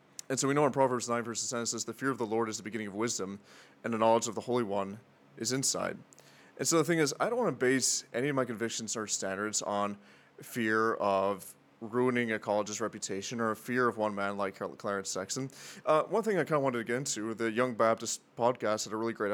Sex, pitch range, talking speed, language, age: male, 110-130 Hz, 250 wpm, English, 20-39